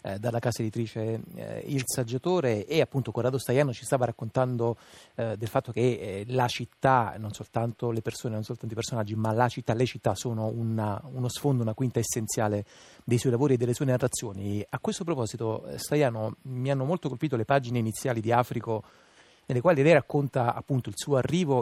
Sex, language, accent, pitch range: male, Italian, native, 110-135 Hz